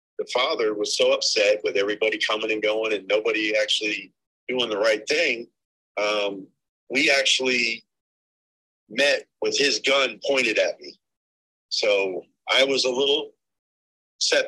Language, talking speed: English, 135 wpm